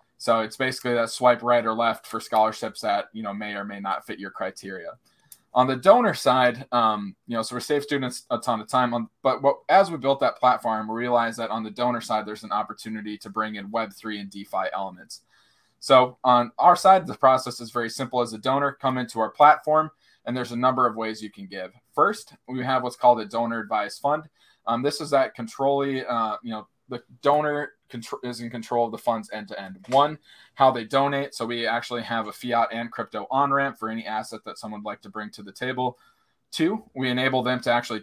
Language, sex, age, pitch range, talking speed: English, male, 20-39, 110-130 Hz, 225 wpm